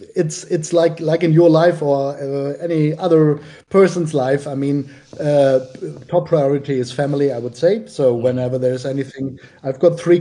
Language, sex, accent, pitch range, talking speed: English, male, German, 135-160 Hz, 175 wpm